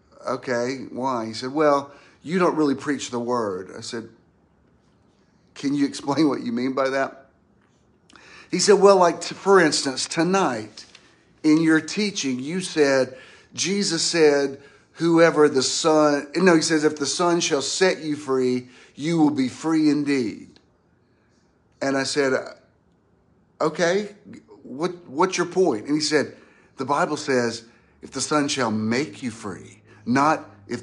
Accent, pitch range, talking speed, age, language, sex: American, 115-155 Hz, 155 wpm, 50-69, English, male